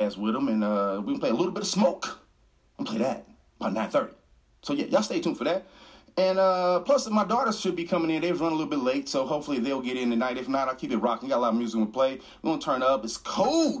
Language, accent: English, American